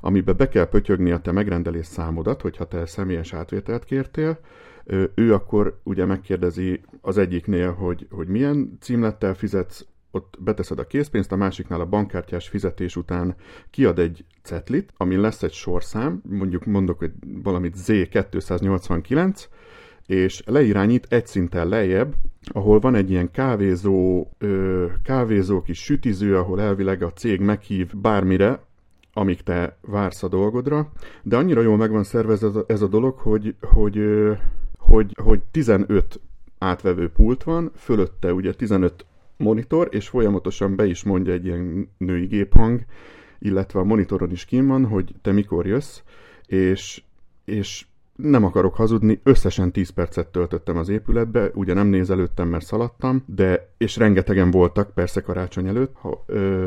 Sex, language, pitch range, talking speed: male, Hungarian, 90-110 Hz, 145 wpm